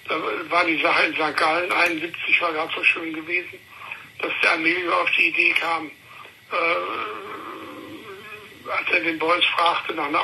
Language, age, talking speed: German, 60-79, 165 wpm